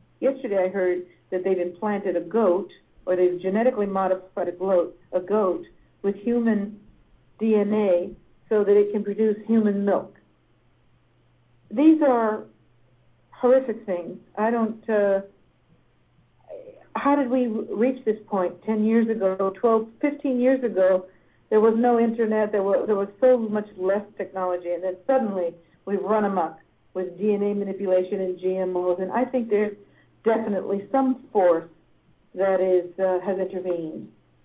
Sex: female